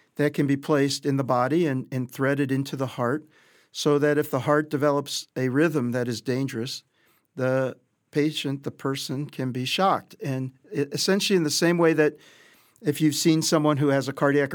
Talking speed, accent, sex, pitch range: 190 wpm, American, male, 130-150 Hz